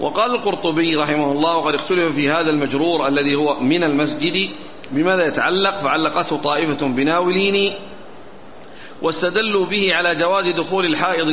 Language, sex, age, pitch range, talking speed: Arabic, male, 40-59, 150-195 Hz, 125 wpm